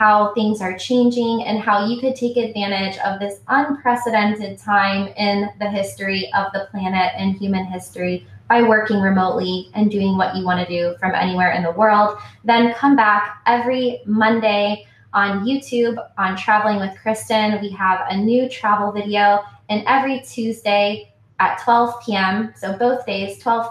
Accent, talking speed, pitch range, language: American, 165 wpm, 195-230 Hz, English